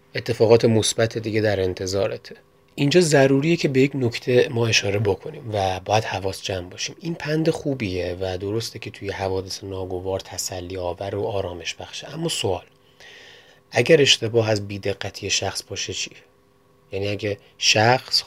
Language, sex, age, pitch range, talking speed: Persian, male, 30-49, 95-125 Hz, 150 wpm